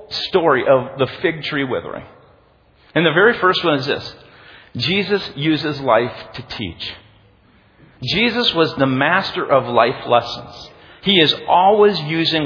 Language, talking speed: English, 140 wpm